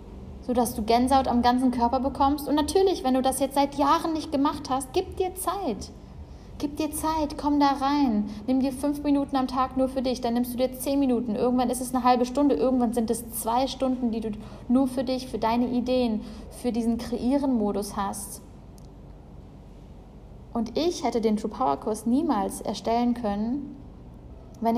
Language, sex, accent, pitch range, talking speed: German, female, German, 215-260 Hz, 185 wpm